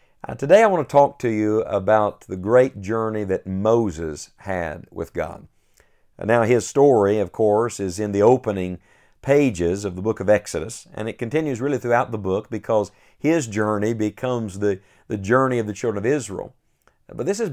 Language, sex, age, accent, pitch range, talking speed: English, male, 50-69, American, 105-125 Hz, 185 wpm